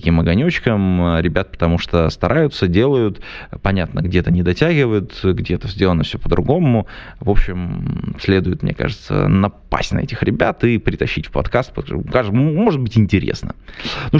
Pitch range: 90-115 Hz